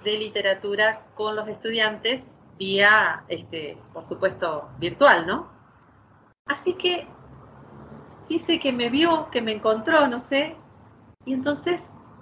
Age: 40-59